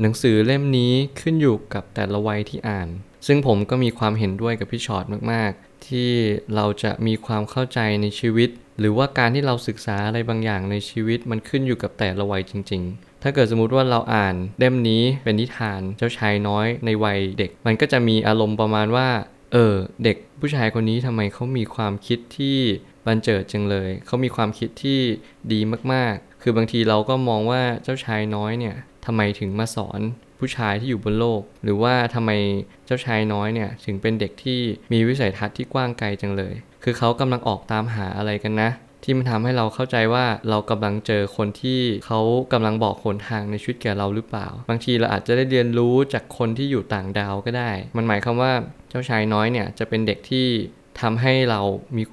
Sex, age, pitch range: male, 20-39, 105-120 Hz